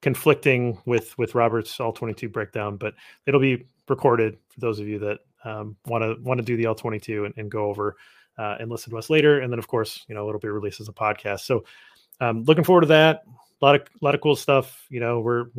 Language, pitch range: English, 115-140 Hz